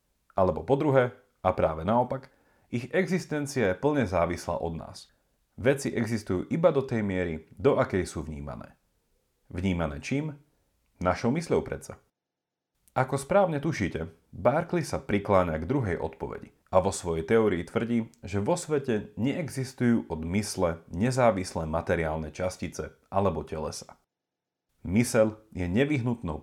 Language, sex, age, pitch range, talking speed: Slovak, male, 40-59, 80-130 Hz, 125 wpm